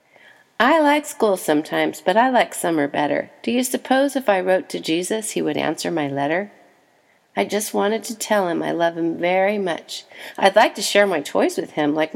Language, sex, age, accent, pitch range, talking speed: English, female, 40-59, American, 185-275 Hz, 205 wpm